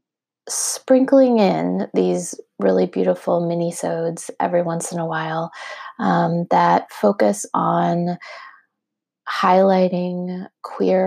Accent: American